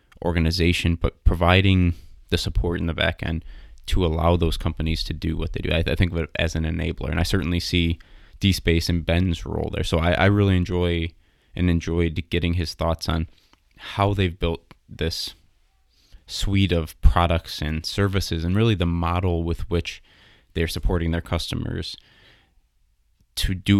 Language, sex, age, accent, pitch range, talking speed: English, male, 20-39, American, 80-90 Hz, 165 wpm